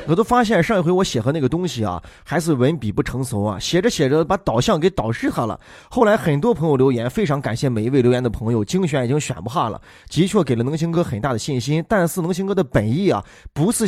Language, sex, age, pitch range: Chinese, male, 20-39, 125-175 Hz